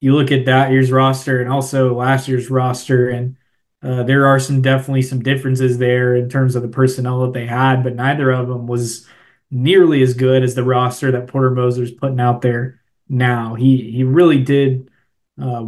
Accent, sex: American, male